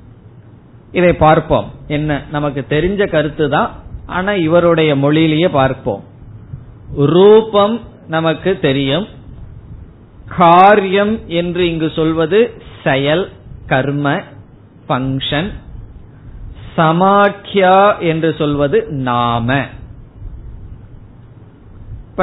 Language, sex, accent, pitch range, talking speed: Tamil, male, native, 120-175 Hz, 65 wpm